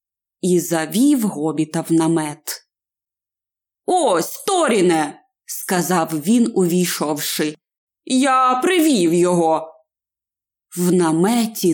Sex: female